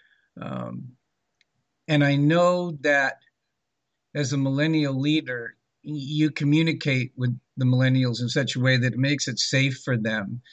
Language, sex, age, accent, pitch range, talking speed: English, male, 50-69, American, 120-140 Hz, 140 wpm